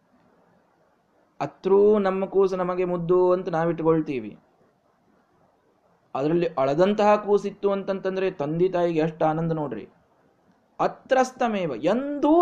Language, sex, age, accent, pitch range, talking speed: Kannada, male, 20-39, native, 180-265 Hz, 85 wpm